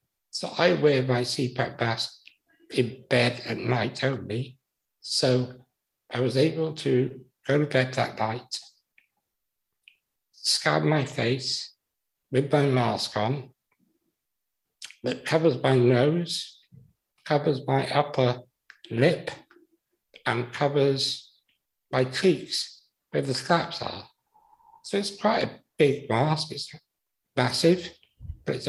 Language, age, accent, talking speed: English, 60-79, British, 115 wpm